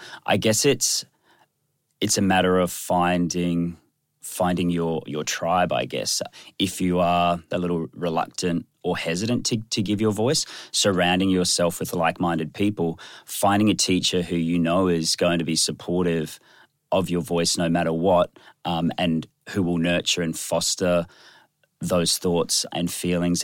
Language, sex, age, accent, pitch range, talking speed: English, male, 30-49, Australian, 85-100 Hz, 155 wpm